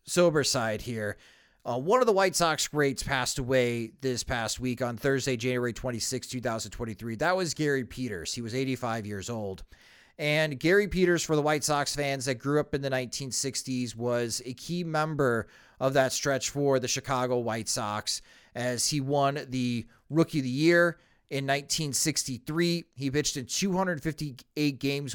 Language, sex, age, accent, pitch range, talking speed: English, male, 30-49, American, 125-150 Hz, 165 wpm